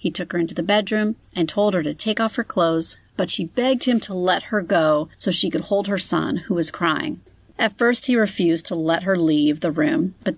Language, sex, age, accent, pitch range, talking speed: English, female, 30-49, American, 165-200 Hz, 245 wpm